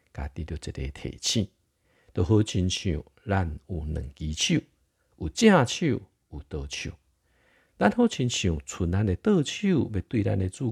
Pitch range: 85-125 Hz